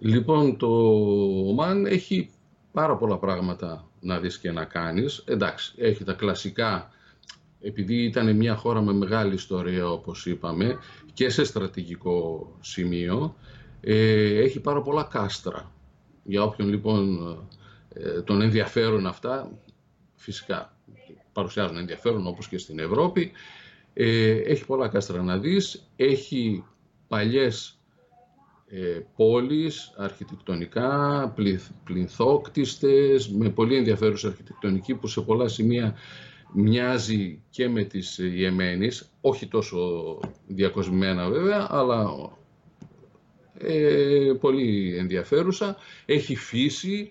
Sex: male